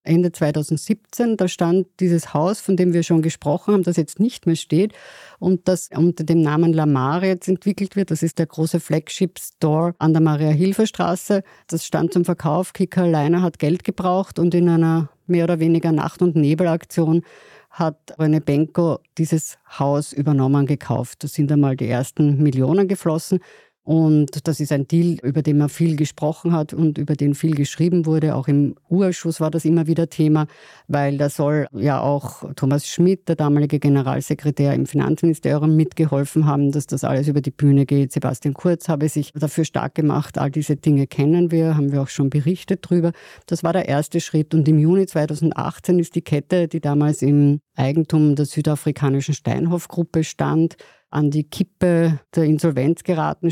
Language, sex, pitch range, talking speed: German, female, 145-170 Hz, 175 wpm